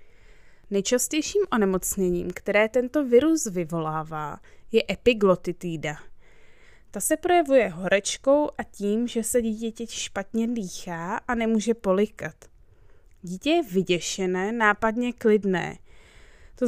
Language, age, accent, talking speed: Czech, 20-39, native, 100 wpm